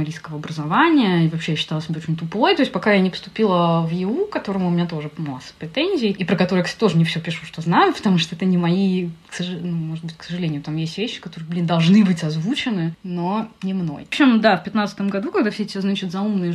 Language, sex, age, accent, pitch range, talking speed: Russian, female, 20-39, native, 170-210 Hz, 235 wpm